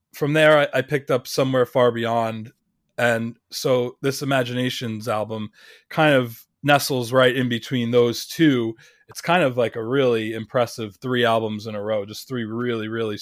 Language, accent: English, American